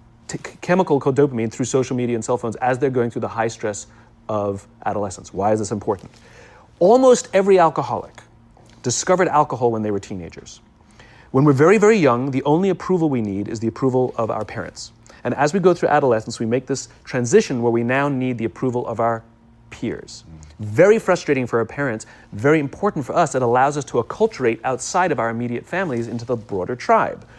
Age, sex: 30-49, male